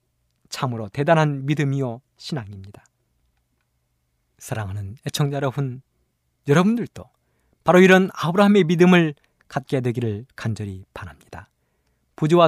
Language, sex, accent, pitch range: Korean, male, native, 100-165 Hz